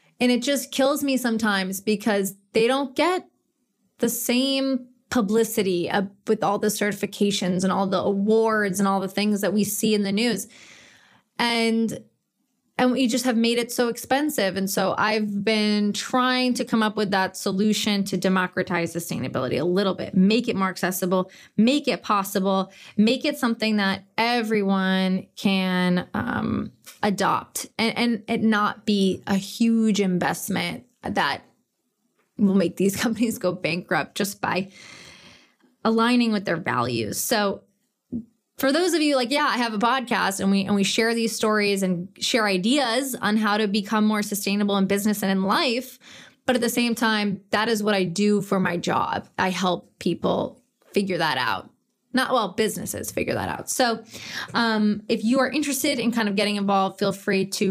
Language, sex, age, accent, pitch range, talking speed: English, female, 20-39, American, 195-235 Hz, 170 wpm